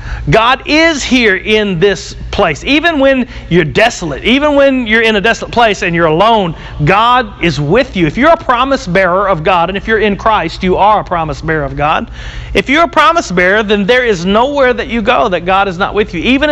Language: English